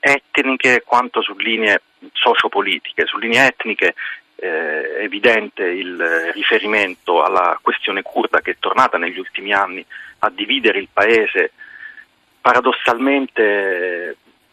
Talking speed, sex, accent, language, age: 105 wpm, male, native, Italian, 40-59